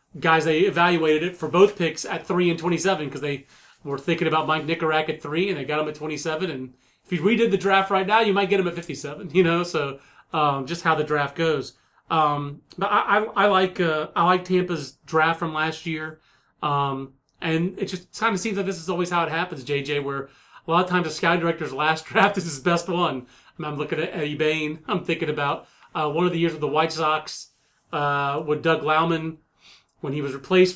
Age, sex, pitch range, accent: 30-49, male, 150-180 Hz, American